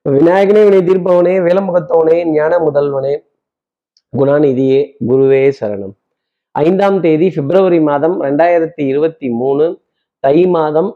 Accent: native